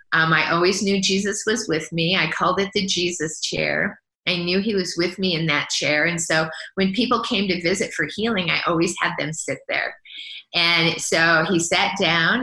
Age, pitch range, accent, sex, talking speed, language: 30-49, 160-195 Hz, American, female, 210 wpm, English